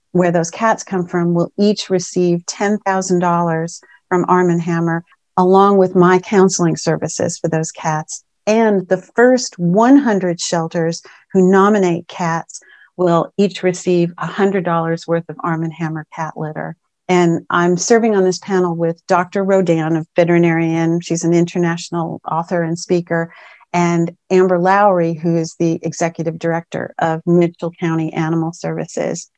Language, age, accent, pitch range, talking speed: English, 50-69, American, 170-195 Hz, 140 wpm